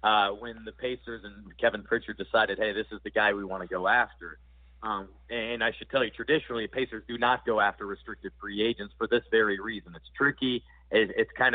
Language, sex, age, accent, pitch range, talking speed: English, male, 40-59, American, 105-125 Hz, 220 wpm